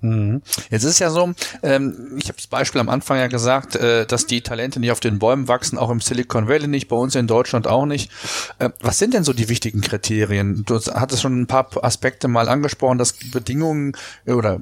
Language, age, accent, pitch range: German, 40-59, German, 120-145 Hz